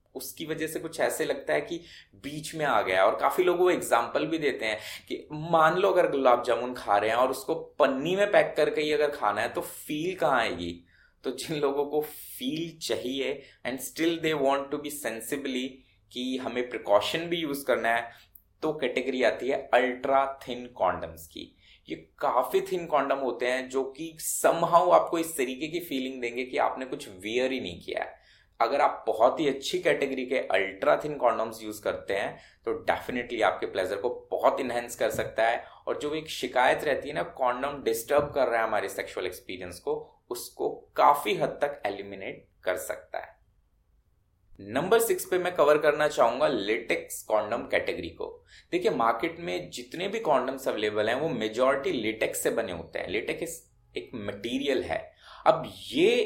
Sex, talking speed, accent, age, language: male, 180 wpm, native, 20-39, Hindi